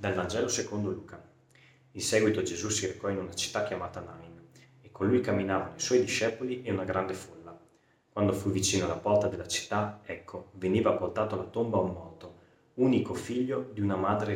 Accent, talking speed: native, 185 wpm